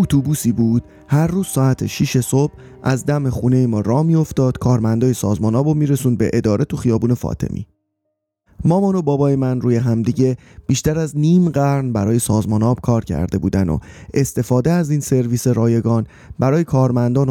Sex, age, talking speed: male, 30-49, 160 wpm